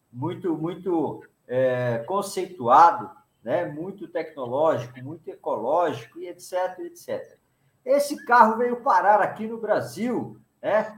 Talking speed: 110 wpm